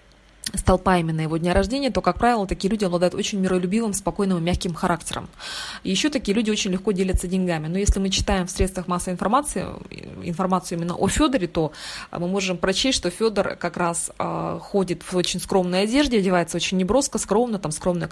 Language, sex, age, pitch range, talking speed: Russian, female, 20-39, 175-210 Hz, 190 wpm